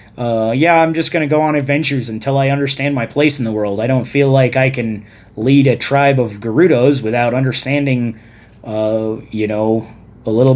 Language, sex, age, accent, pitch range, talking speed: English, male, 30-49, American, 110-140 Hz, 200 wpm